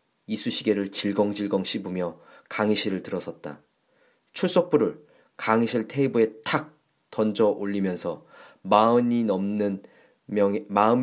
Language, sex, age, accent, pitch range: Korean, male, 30-49, native, 100-140 Hz